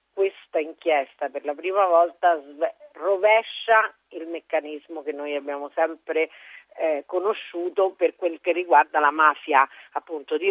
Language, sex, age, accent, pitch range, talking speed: Italian, female, 40-59, native, 155-200 Hz, 130 wpm